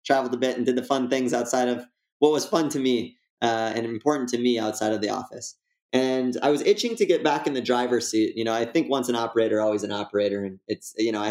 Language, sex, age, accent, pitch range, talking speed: English, male, 20-39, American, 115-150 Hz, 265 wpm